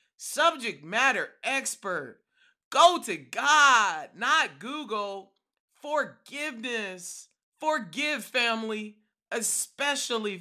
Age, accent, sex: 40-59, American, male